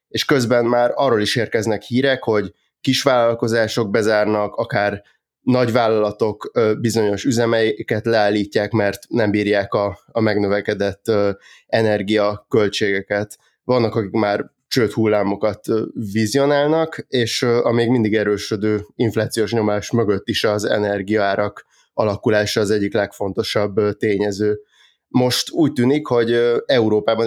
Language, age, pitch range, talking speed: Hungarian, 20-39, 105-115 Hz, 110 wpm